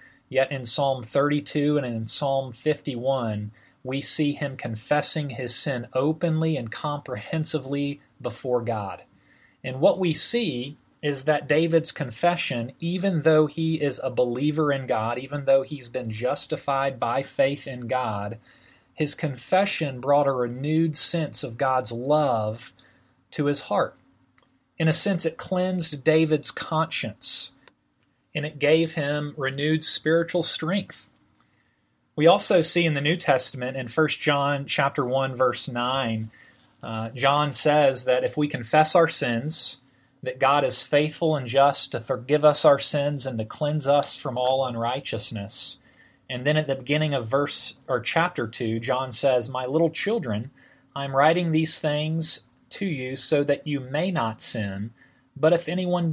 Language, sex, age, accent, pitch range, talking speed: English, male, 30-49, American, 130-155 Hz, 150 wpm